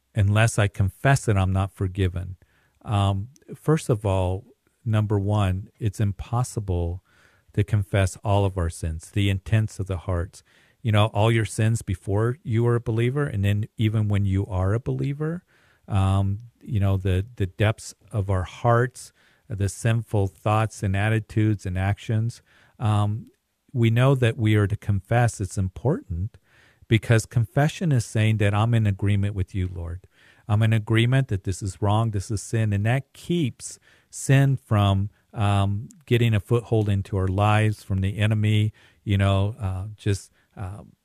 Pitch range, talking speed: 95-115 Hz, 160 wpm